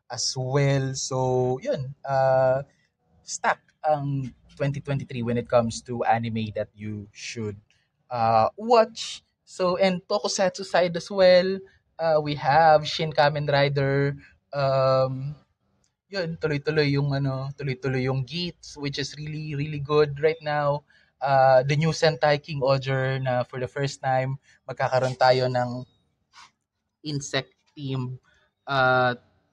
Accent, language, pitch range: native, Filipino, 130-150 Hz